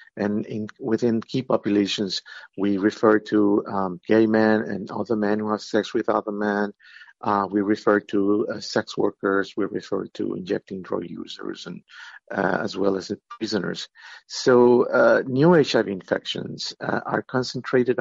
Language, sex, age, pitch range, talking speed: English, male, 50-69, 105-130 Hz, 160 wpm